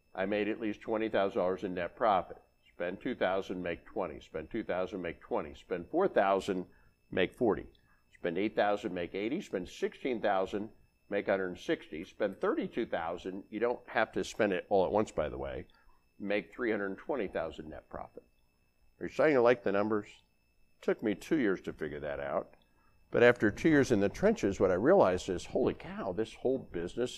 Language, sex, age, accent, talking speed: English, male, 50-69, American, 205 wpm